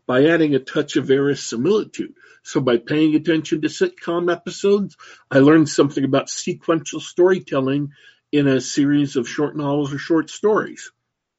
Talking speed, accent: 150 wpm, American